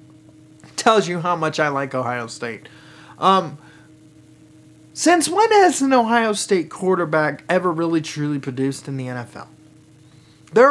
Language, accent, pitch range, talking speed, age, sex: English, American, 155-225 Hz, 135 wpm, 30-49, male